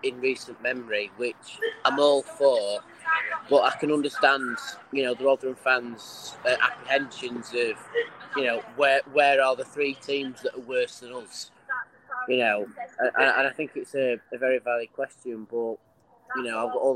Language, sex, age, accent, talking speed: English, male, 20-39, British, 175 wpm